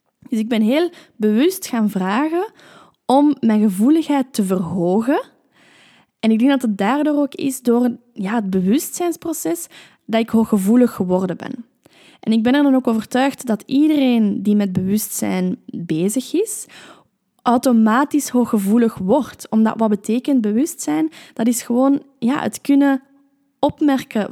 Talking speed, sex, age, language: 140 wpm, female, 10-29, Dutch